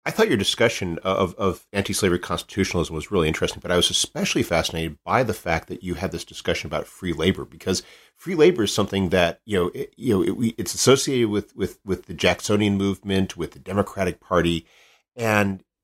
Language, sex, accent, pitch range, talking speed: English, male, American, 85-115 Hz, 200 wpm